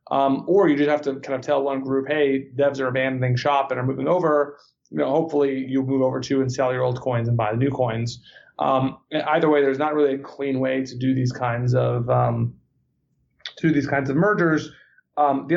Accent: American